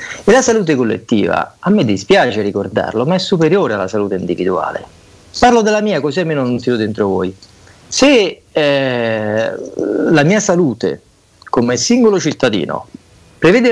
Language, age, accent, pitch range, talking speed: Italian, 40-59, native, 120-195 Hz, 140 wpm